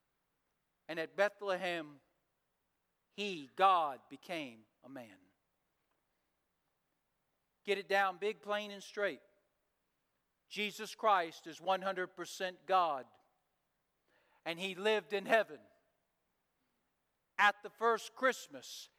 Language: English